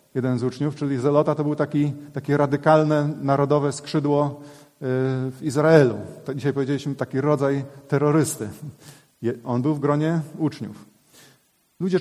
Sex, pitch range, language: male, 130-155 Hz, Polish